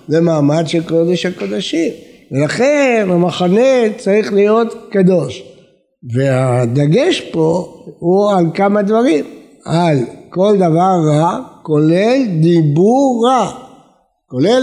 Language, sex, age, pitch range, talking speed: Hebrew, male, 60-79, 155-210 Hz, 100 wpm